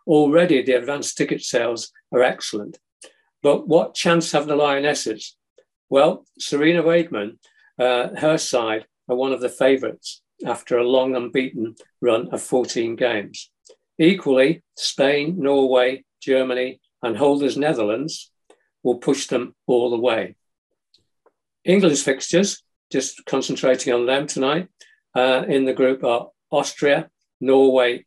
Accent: British